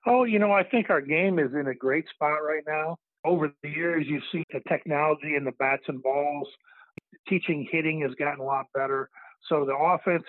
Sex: male